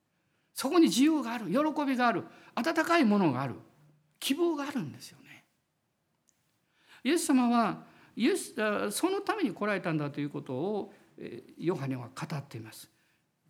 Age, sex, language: 50-69, male, Japanese